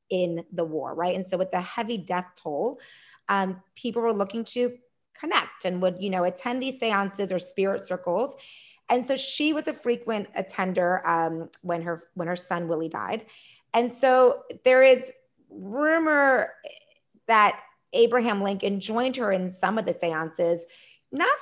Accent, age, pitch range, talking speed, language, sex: American, 30-49, 180-245 Hz, 160 wpm, English, female